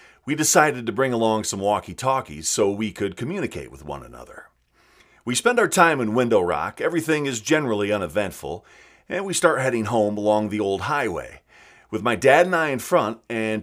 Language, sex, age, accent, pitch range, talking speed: English, male, 40-59, American, 105-150 Hz, 185 wpm